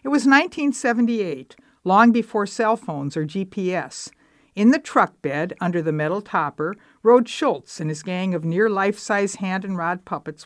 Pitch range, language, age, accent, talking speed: 170-230 Hz, English, 60-79, American, 150 wpm